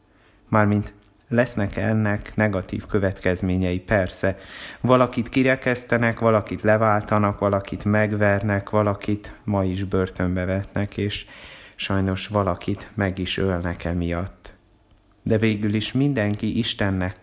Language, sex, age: Hungarian, male, 30-49